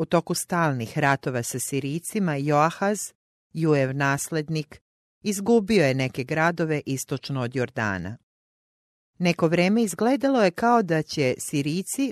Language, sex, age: English, female, 40-59